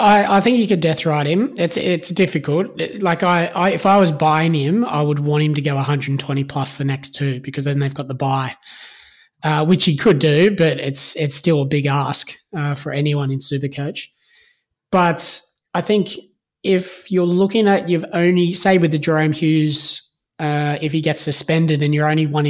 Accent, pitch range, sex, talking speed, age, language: Australian, 145-170 Hz, male, 205 wpm, 20-39, English